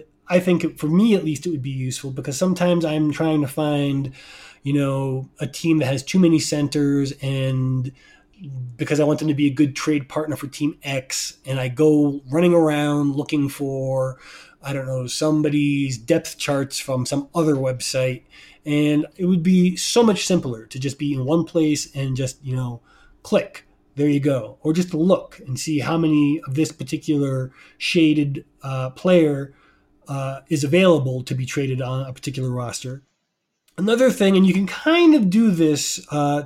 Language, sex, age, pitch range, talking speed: English, male, 20-39, 135-165 Hz, 180 wpm